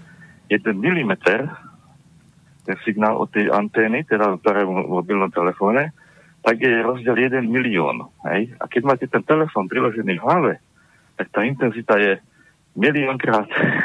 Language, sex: Slovak, male